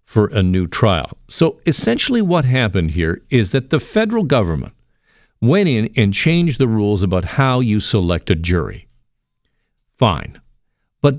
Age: 50-69